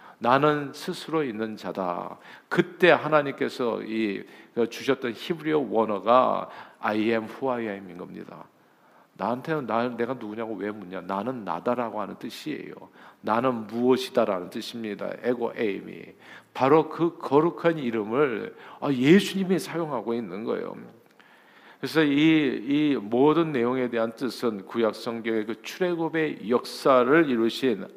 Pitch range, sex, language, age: 115-170 Hz, male, Korean, 50-69